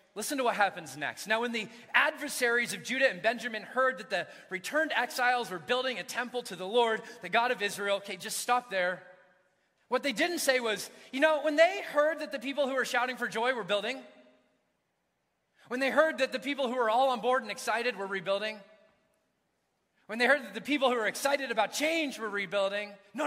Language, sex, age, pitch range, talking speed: English, male, 30-49, 185-260 Hz, 210 wpm